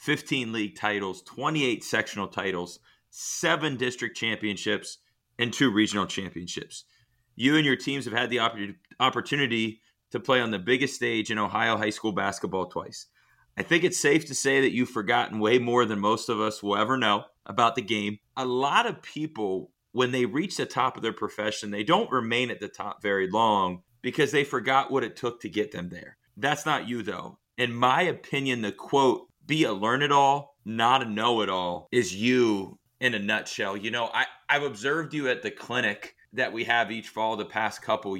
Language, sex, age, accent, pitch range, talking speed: English, male, 30-49, American, 105-130 Hz, 190 wpm